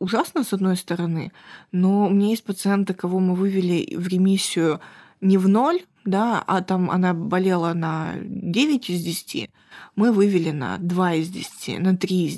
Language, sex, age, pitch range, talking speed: Russian, female, 20-39, 175-200 Hz, 170 wpm